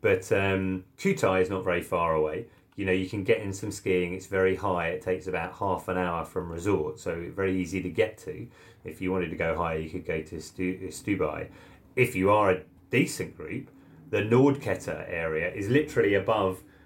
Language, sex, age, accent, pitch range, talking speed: English, male, 30-49, British, 90-105 Hz, 200 wpm